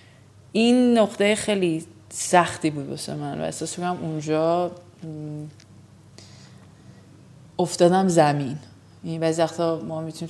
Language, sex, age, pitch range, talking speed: Persian, female, 30-49, 145-180 Hz, 100 wpm